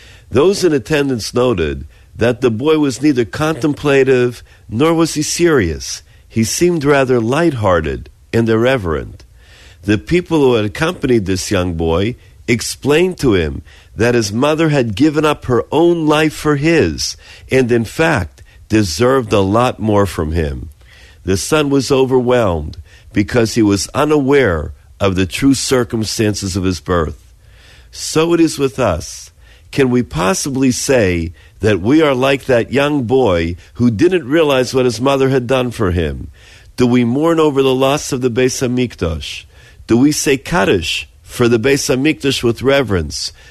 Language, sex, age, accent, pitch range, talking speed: English, male, 50-69, American, 95-140 Hz, 155 wpm